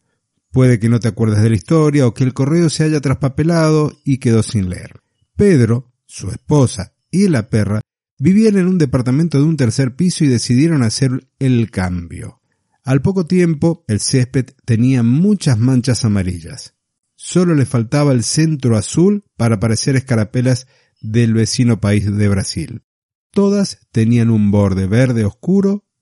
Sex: male